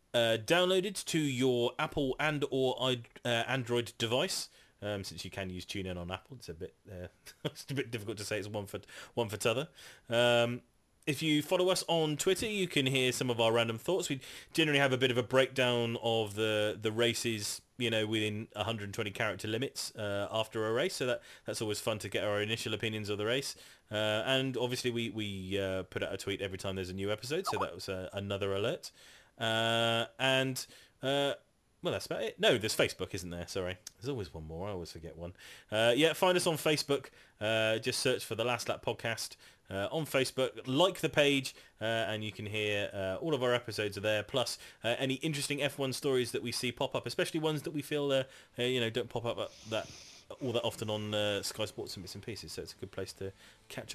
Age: 30-49